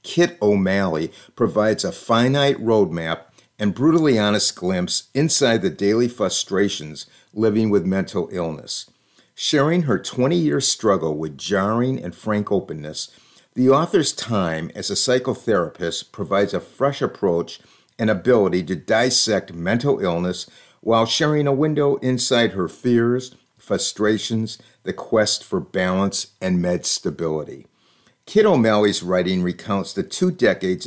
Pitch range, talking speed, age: 100-130 Hz, 125 wpm, 50-69